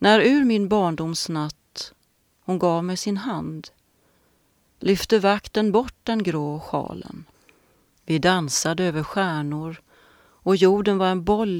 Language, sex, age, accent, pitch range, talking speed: Swedish, female, 40-59, native, 155-200 Hz, 125 wpm